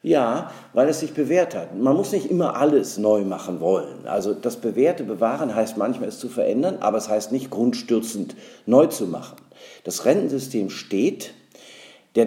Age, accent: 50-69, German